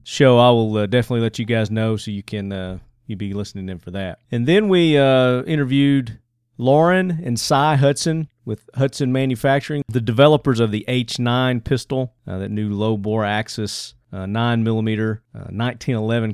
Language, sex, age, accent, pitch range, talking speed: English, male, 40-59, American, 105-130 Hz, 170 wpm